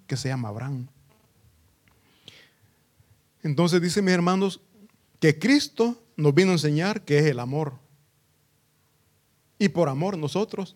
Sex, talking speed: male, 125 wpm